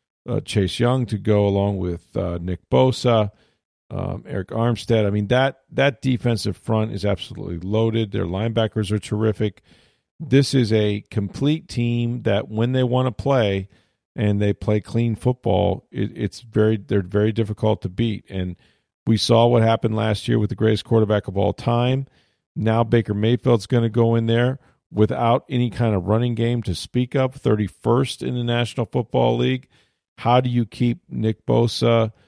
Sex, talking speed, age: male, 175 wpm, 40-59